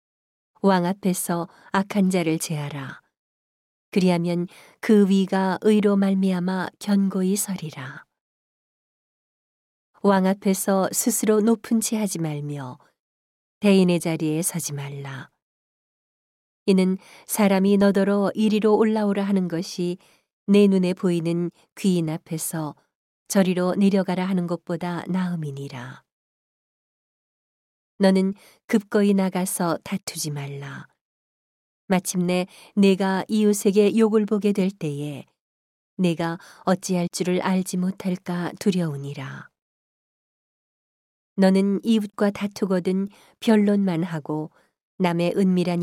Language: Korean